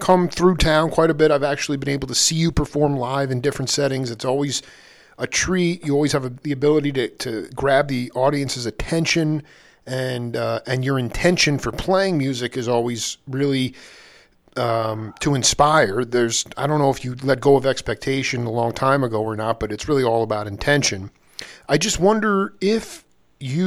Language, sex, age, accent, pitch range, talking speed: English, male, 40-59, American, 125-155 Hz, 190 wpm